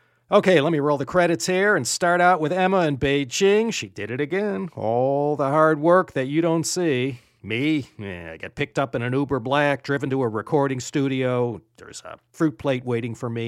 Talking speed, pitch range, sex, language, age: 210 wpm, 120-165 Hz, male, English, 40-59